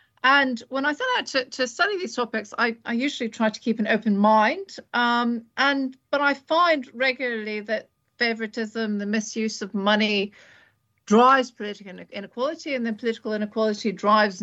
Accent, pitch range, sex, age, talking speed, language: British, 205-260 Hz, female, 40-59, 160 wpm, English